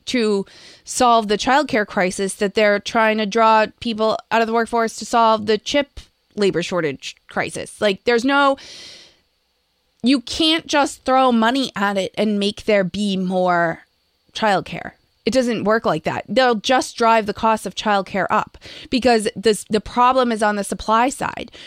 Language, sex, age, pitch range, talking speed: English, female, 20-39, 205-255 Hz, 165 wpm